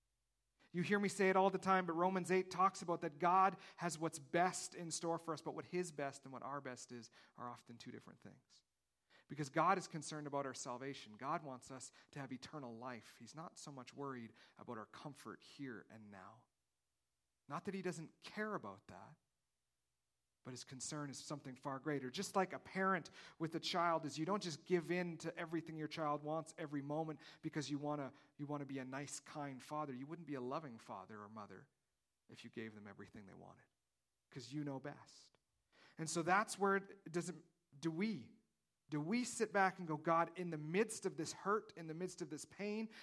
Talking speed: 210 wpm